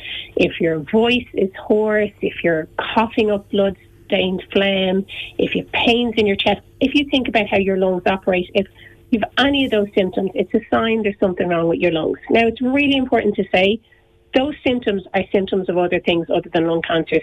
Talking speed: 205 wpm